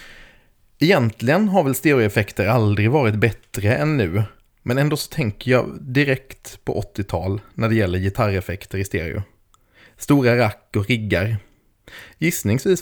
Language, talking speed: Swedish, 130 wpm